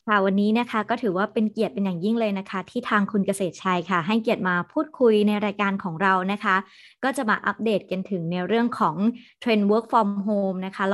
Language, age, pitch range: Thai, 20-39, 185-225 Hz